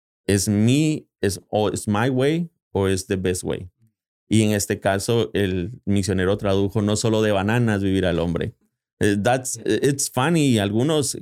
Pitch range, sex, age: 95-110 Hz, male, 30-49